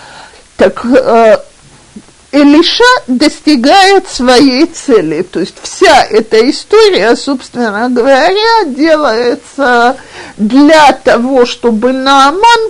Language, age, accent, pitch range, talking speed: Russian, 50-69, native, 225-320 Hz, 80 wpm